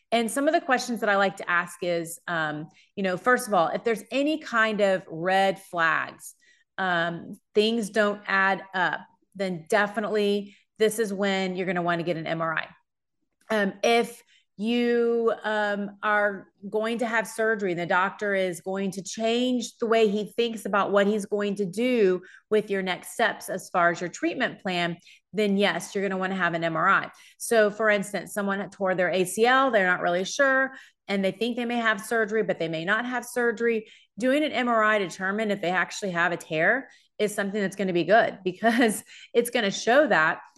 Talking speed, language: 200 wpm, English